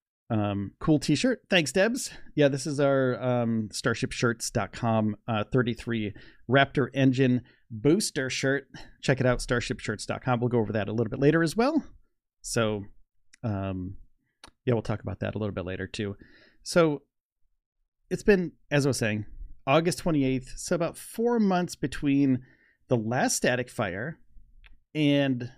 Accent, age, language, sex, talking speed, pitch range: American, 30-49, English, male, 145 wpm, 115-150 Hz